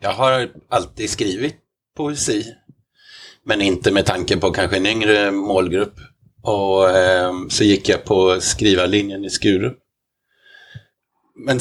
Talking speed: 130 wpm